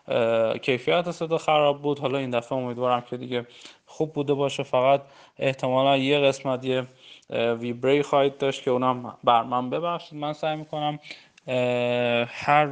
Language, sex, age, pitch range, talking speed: Persian, male, 20-39, 120-150 Hz, 135 wpm